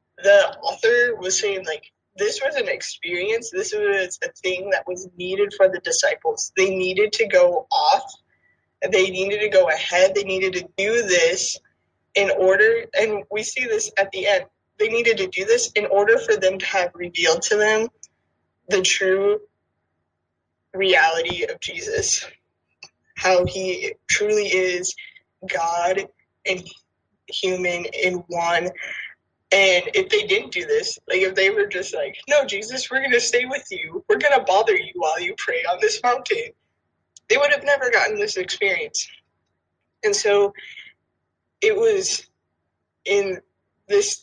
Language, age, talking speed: English, 20-39, 155 wpm